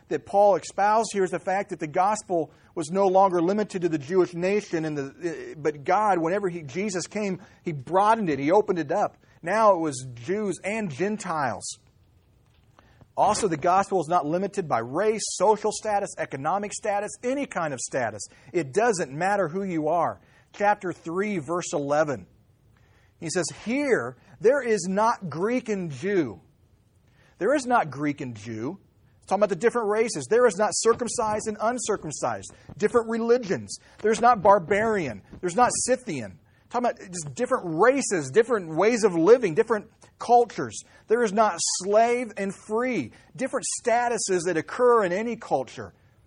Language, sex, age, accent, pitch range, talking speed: English, male, 40-59, American, 130-215 Hz, 160 wpm